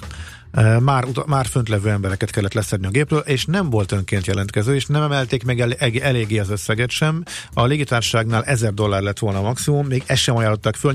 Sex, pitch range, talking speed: male, 100-125 Hz, 195 wpm